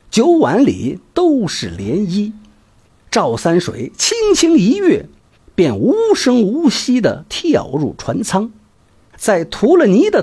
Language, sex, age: Chinese, male, 50-69